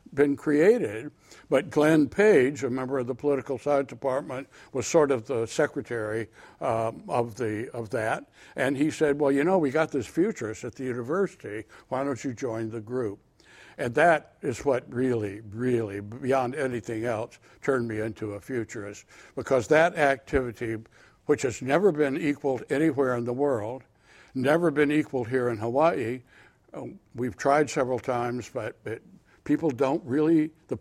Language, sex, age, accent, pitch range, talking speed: English, male, 60-79, American, 120-150 Hz, 160 wpm